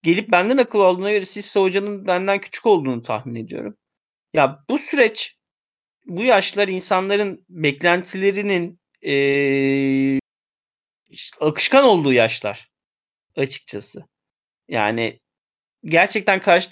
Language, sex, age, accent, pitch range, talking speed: Turkish, male, 30-49, native, 140-200 Hz, 100 wpm